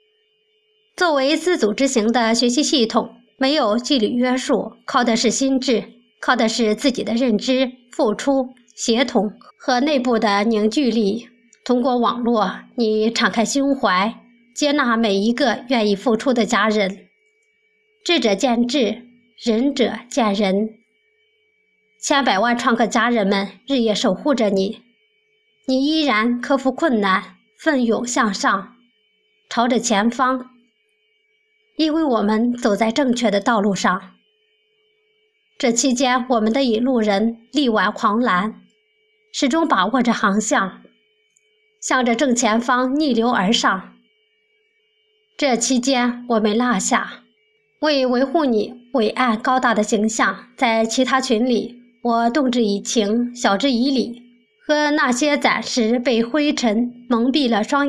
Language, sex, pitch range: Chinese, male, 225-290 Hz